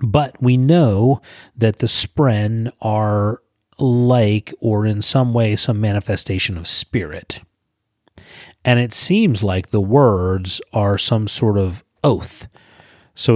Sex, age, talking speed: male, 30-49, 125 wpm